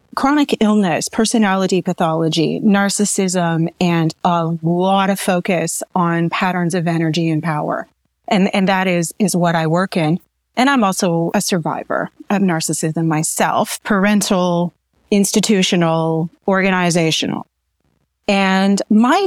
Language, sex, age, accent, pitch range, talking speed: English, female, 30-49, American, 175-210 Hz, 120 wpm